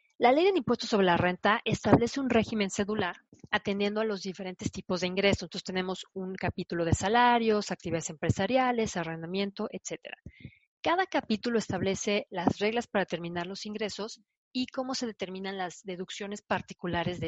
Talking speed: 155 wpm